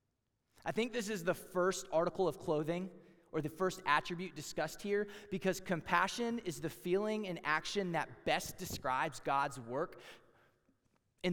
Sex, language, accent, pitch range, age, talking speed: male, English, American, 155-205 Hz, 30-49, 150 wpm